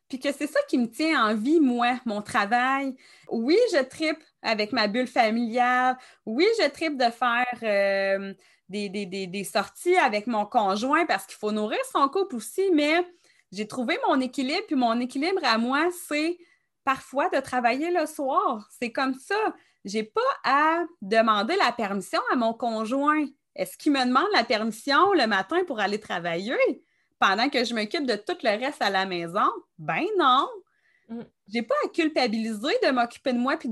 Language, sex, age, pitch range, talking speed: French, female, 30-49, 215-320 Hz, 180 wpm